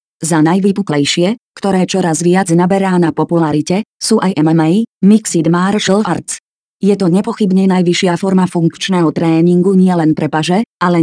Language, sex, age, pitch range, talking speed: Slovak, female, 30-49, 160-195 Hz, 140 wpm